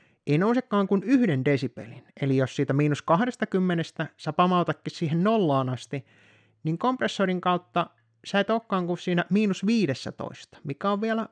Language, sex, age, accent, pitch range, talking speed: Finnish, male, 30-49, native, 135-190 Hz, 145 wpm